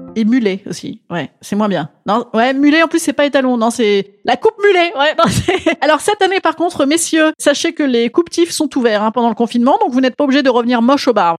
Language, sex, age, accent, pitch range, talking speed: French, female, 30-49, French, 225-325 Hz, 260 wpm